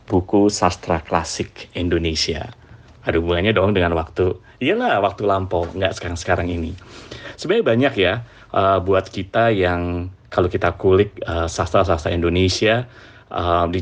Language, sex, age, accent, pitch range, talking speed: Indonesian, male, 30-49, native, 90-110 Hz, 115 wpm